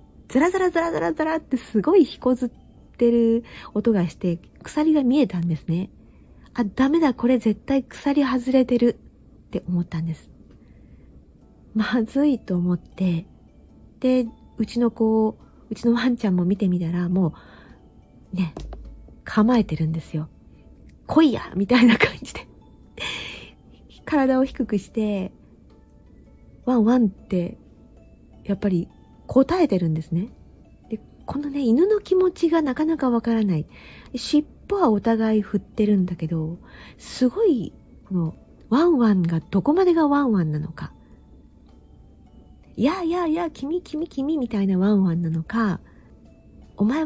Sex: female